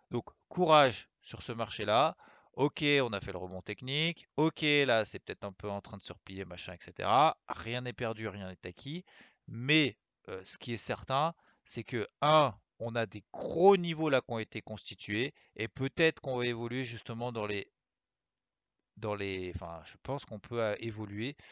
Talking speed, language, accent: 185 wpm, French, French